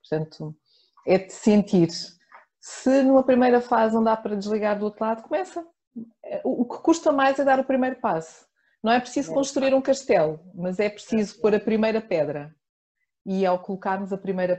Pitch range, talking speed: 175-235 Hz, 175 wpm